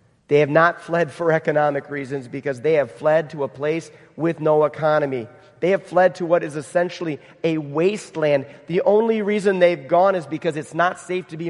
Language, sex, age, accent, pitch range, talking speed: English, male, 40-59, American, 135-165 Hz, 200 wpm